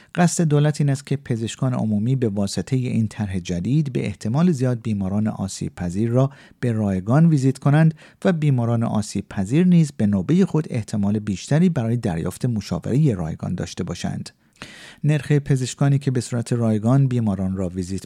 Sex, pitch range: male, 100-140 Hz